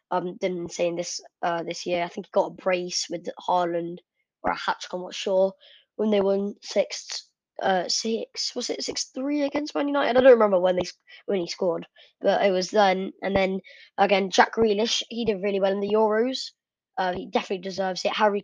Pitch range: 185-240 Hz